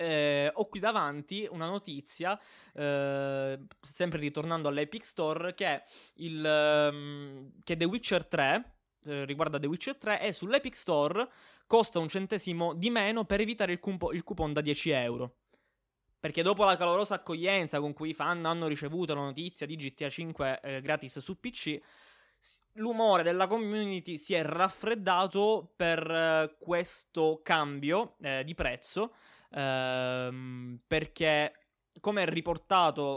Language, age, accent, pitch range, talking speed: Italian, 20-39, native, 145-195 Hz, 140 wpm